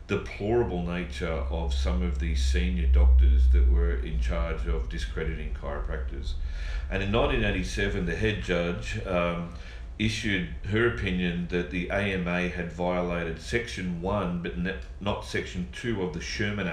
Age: 40-59